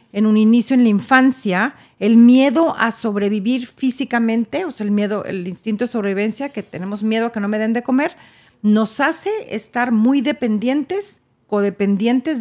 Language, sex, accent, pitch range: Spanish, female, Mexican, 195-245 Hz